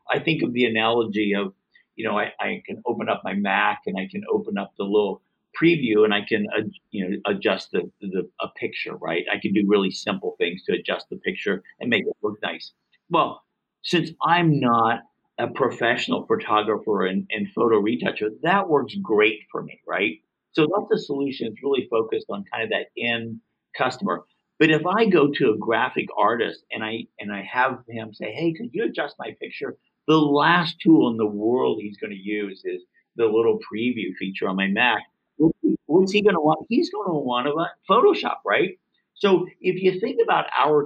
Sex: male